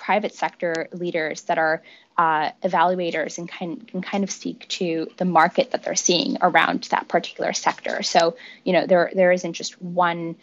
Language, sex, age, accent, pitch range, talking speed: English, female, 20-39, American, 165-200 Hz, 180 wpm